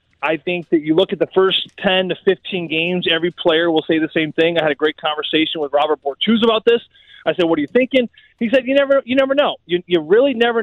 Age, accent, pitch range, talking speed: 20-39, American, 160-210 Hz, 260 wpm